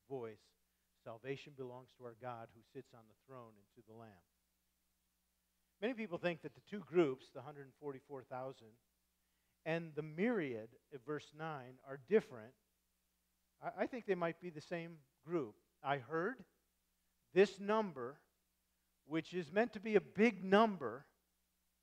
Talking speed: 145 wpm